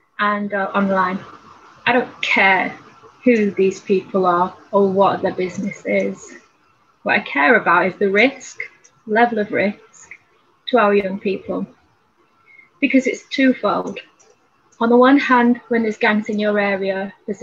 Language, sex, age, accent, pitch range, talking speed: English, female, 20-39, British, 190-225 Hz, 145 wpm